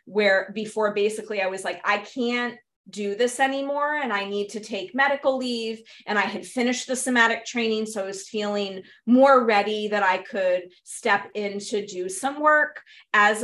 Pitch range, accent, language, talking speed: 190-230 Hz, American, English, 185 wpm